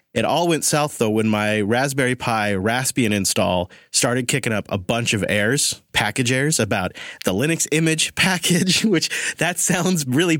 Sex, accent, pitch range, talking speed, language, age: male, American, 115-160 Hz, 165 wpm, English, 30-49